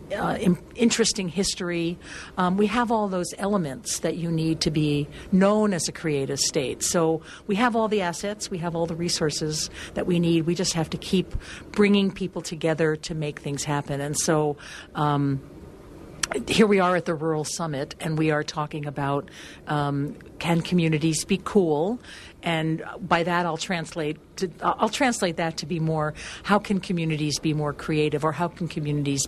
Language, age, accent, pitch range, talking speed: English, 50-69, American, 150-185 Hz, 180 wpm